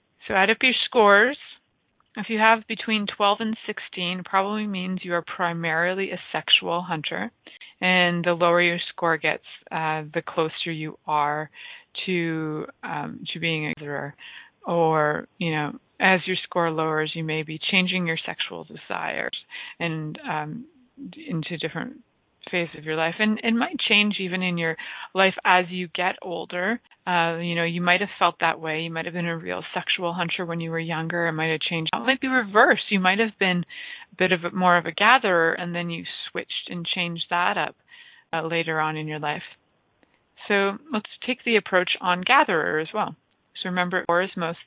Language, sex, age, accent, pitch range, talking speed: English, female, 30-49, American, 165-205 Hz, 190 wpm